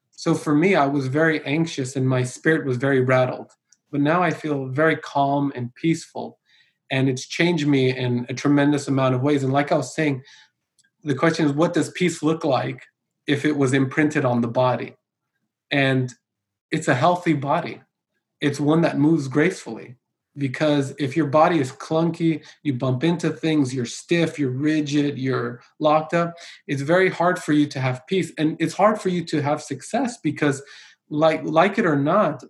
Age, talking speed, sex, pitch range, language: 20-39, 185 wpm, male, 140-165 Hz, English